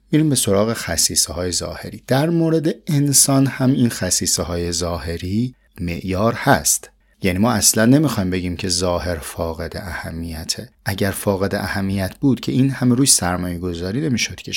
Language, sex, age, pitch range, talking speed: Persian, male, 30-49, 90-120 Hz, 145 wpm